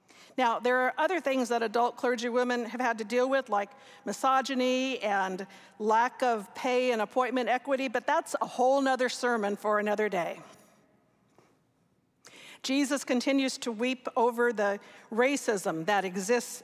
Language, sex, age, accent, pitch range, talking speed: English, female, 50-69, American, 225-260 Hz, 150 wpm